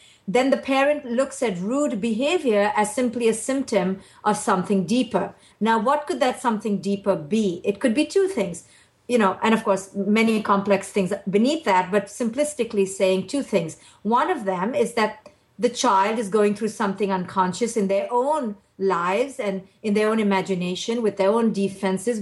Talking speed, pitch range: 180 wpm, 195-245 Hz